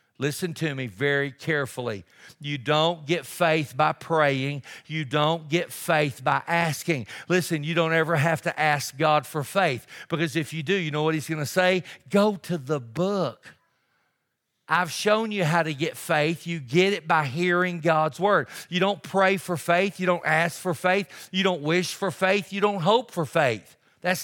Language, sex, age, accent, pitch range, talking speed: English, male, 50-69, American, 150-185 Hz, 190 wpm